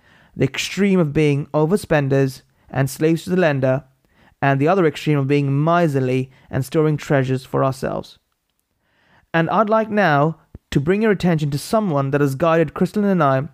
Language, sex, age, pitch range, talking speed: English, male, 30-49, 140-170 Hz, 170 wpm